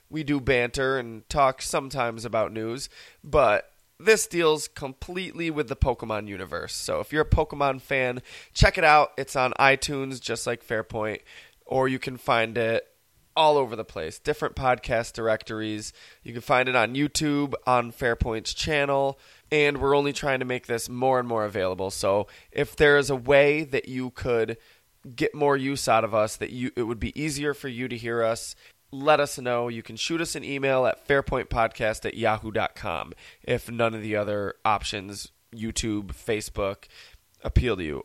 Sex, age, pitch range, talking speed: male, 20-39, 115-150 Hz, 180 wpm